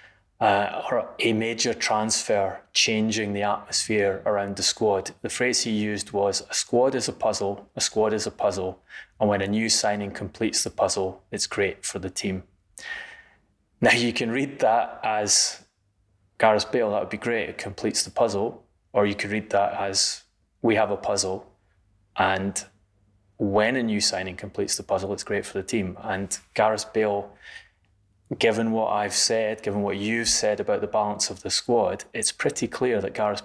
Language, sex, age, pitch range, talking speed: English, male, 20-39, 100-110 Hz, 180 wpm